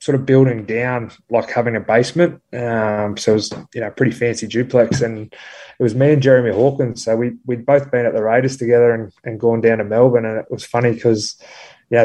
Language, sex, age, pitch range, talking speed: English, male, 20-39, 110-125 Hz, 230 wpm